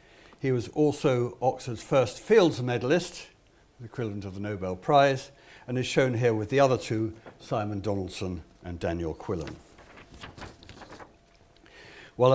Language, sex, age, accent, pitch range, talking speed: English, male, 60-79, British, 110-145 Hz, 130 wpm